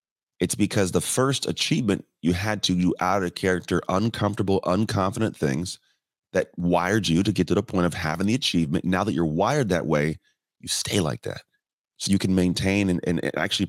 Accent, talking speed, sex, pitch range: American, 195 wpm, male, 85-105 Hz